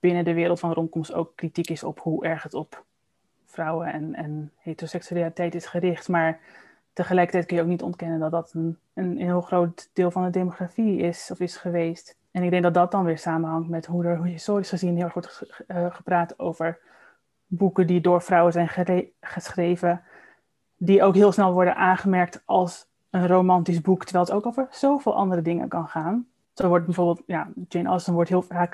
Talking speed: 205 wpm